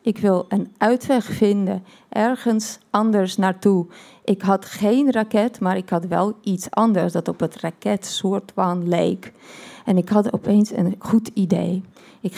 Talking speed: 150 wpm